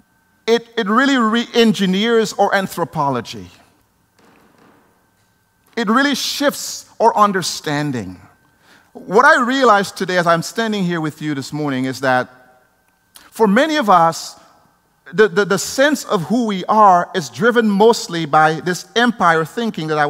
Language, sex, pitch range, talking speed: English, male, 140-220 Hz, 135 wpm